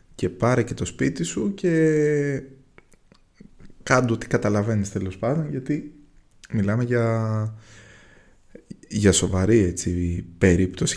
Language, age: Greek, 20-39